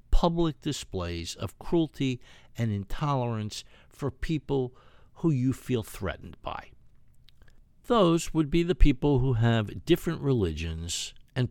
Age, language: 60-79, English